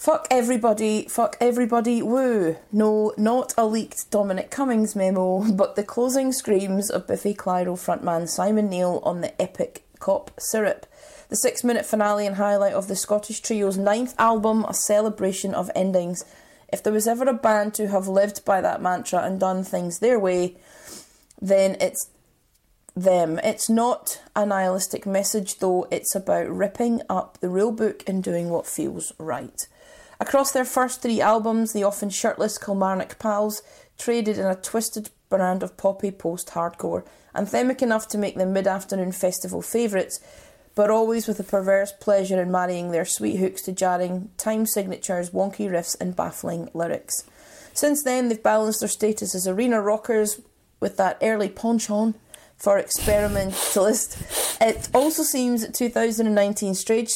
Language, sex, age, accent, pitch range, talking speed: English, female, 30-49, British, 190-225 Hz, 155 wpm